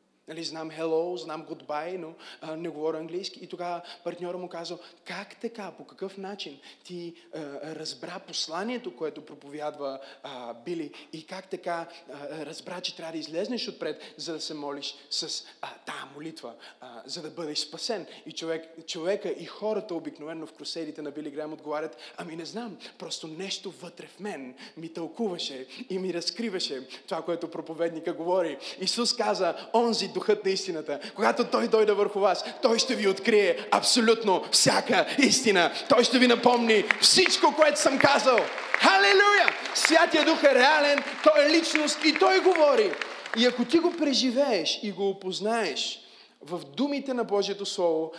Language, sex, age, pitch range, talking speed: Bulgarian, male, 20-39, 160-225 Hz, 160 wpm